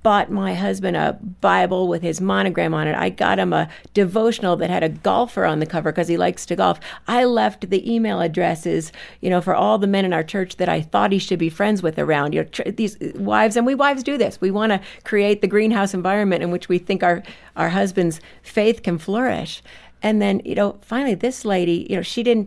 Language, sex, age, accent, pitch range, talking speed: English, female, 50-69, American, 160-210 Hz, 235 wpm